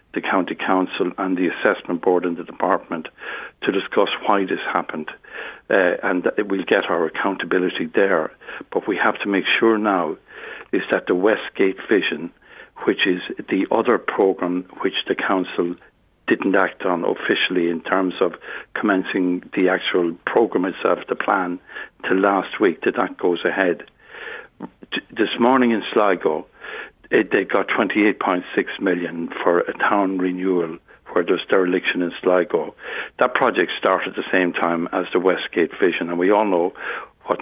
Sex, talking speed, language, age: male, 150 wpm, English, 60-79